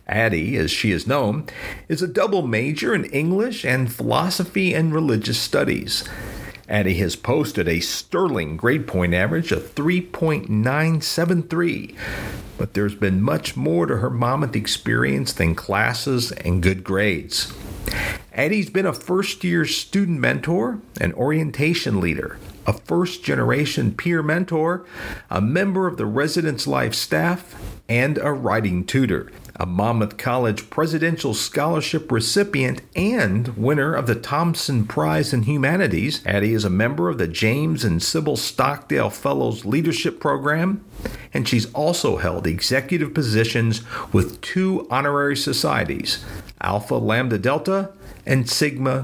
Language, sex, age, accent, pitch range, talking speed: English, male, 50-69, American, 105-170 Hz, 130 wpm